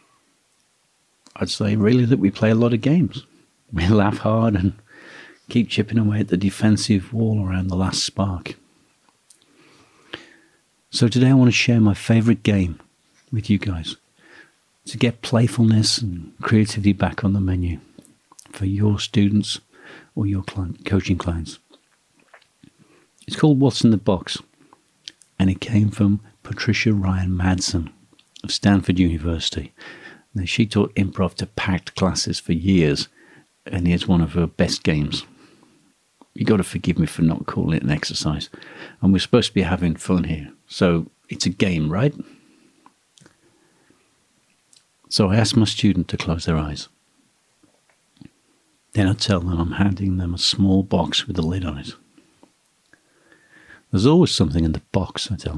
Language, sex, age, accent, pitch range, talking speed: English, male, 50-69, British, 90-110 Hz, 150 wpm